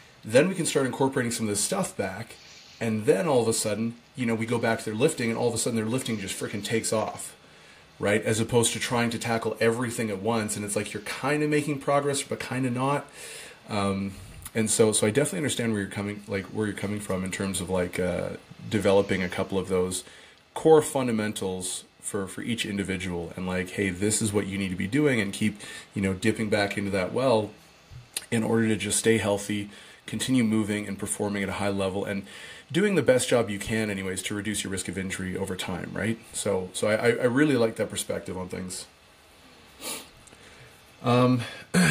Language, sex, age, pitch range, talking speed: English, male, 30-49, 100-125 Hz, 215 wpm